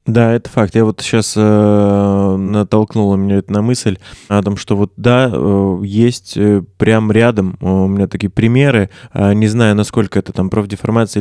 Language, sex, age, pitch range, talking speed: Russian, male, 20-39, 100-120 Hz, 160 wpm